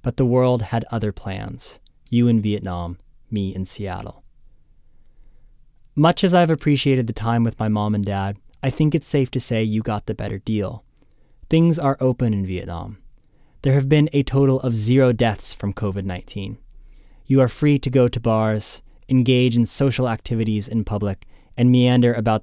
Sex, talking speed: male, 175 wpm